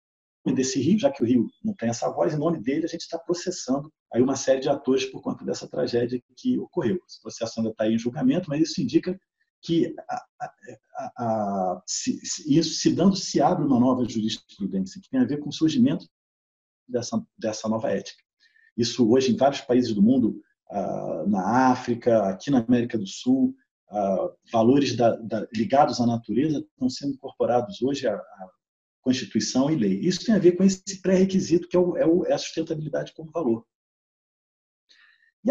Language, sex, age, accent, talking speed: Portuguese, male, 40-59, Brazilian, 180 wpm